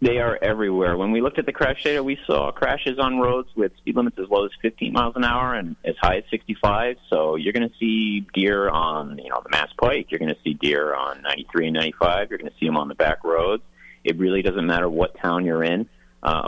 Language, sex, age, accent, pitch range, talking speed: English, male, 30-49, American, 75-120 Hz, 250 wpm